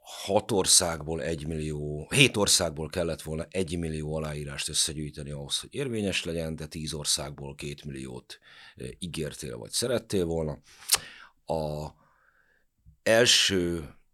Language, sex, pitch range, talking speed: Hungarian, male, 75-85 Hz, 115 wpm